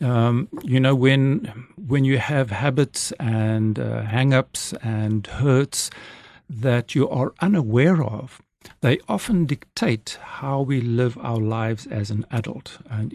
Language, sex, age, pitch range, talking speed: English, male, 60-79, 115-145 Hz, 135 wpm